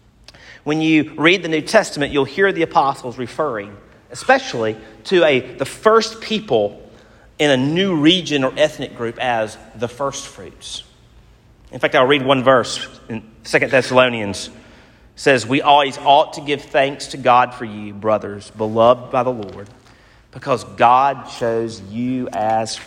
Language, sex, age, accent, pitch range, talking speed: English, male, 40-59, American, 115-150 Hz, 150 wpm